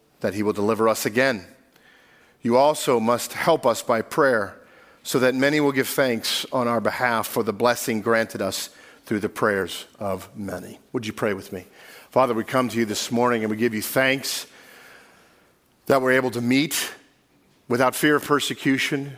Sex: male